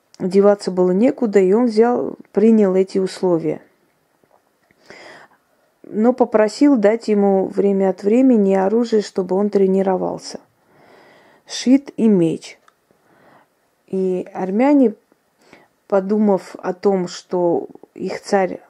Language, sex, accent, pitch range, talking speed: Russian, female, native, 185-225 Hz, 95 wpm